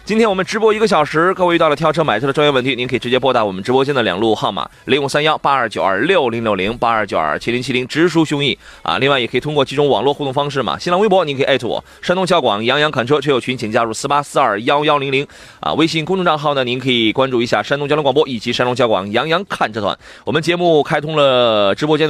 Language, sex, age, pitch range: Chinese, male, 30-49, 120-160 Hz